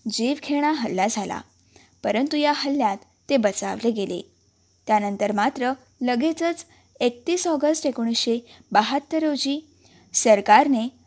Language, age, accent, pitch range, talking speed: Marathi, 20-39, native, 230-295 Hz, 90 wpm